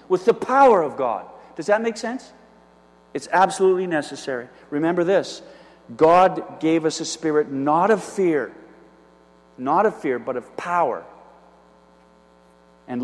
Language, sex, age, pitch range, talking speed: English, male, 50-69, 130-185 Hz, 135 wpm